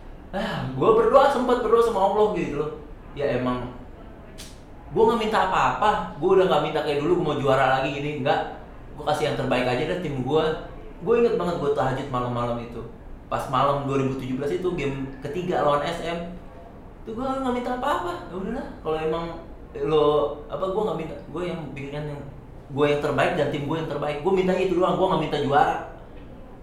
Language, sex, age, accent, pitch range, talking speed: Indonesian, male, 30-49, native, 150-220 Hz, 190 wpm